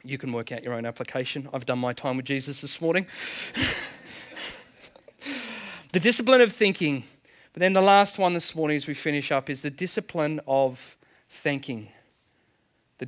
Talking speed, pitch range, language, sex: 165 wpm, 135-180 Hz, English, male